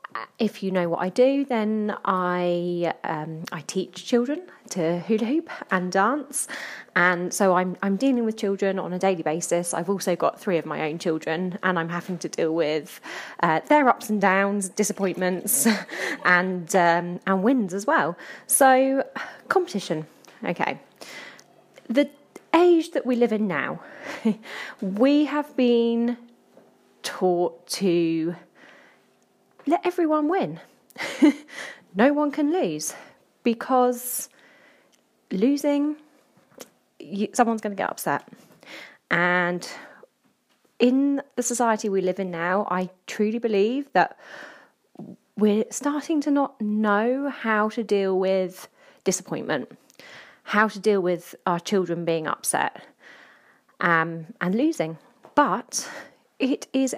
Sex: female